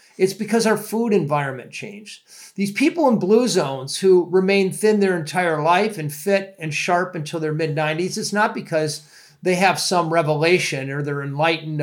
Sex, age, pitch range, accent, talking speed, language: male, 50-69, 150-195 Hz, American, 180 wpm, English